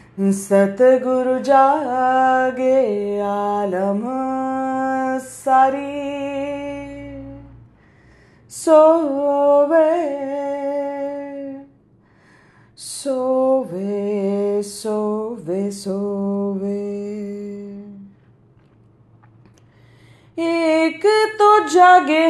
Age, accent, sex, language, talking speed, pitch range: 20-39, native, female, Hindi, 30 wpm, 205-280 Hz